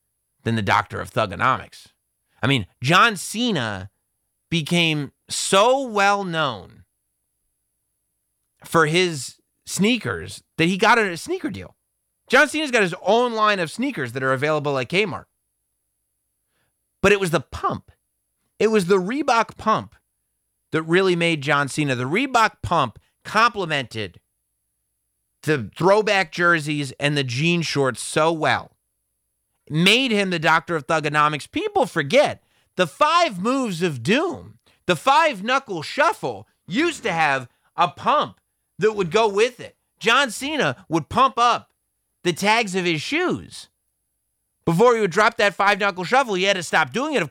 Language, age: English, 30-49